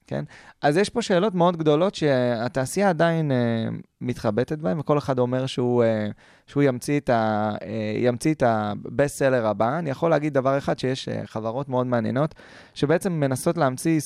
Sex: male